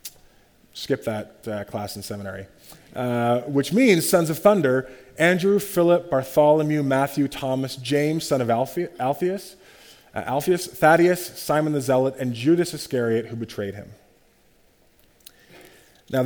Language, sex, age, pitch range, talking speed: English, male, 20-39, 115-150 Hz, 130 wpm